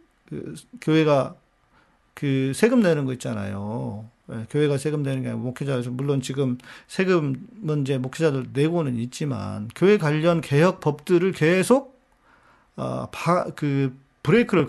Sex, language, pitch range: male, Korean, 125-190 Hz